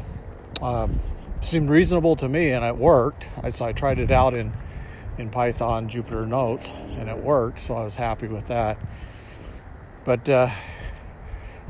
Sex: male